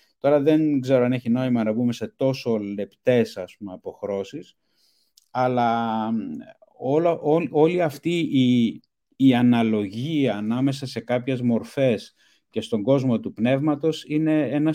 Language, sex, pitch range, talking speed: Greek, male, 110-150 Hz, 135 wpm